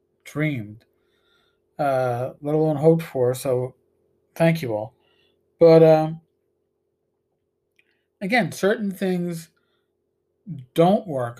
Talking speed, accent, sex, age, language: 90 wpm, American, male, 50-69, English